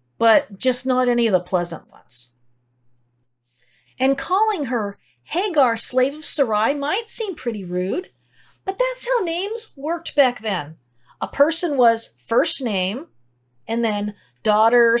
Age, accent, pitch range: 40-59, American, 185-280 Hz